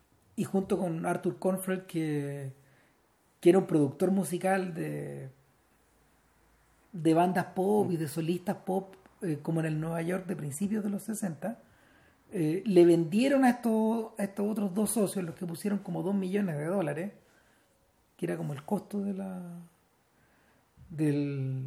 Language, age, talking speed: Spanish, 40-59, 155 wpm